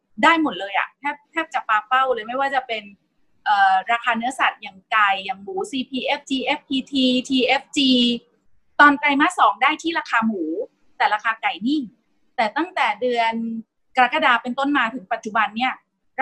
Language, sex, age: Thai, female, 30-49